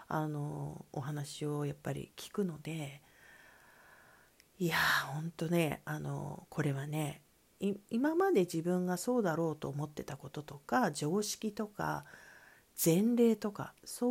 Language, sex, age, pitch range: Japanese, female, 40-59, 150-230 Hz